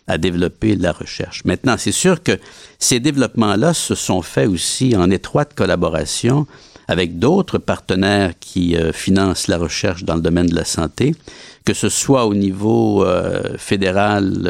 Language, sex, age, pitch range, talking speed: French, male, 60-79, 90-110 Hz, 155 wpm